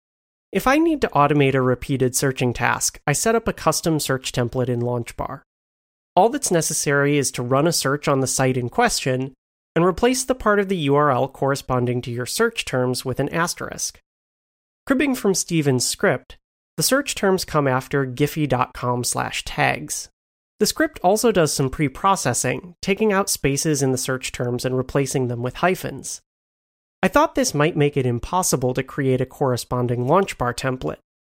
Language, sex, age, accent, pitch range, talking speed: English, male, 30-49, American, 125-175 Hz, 170 wpm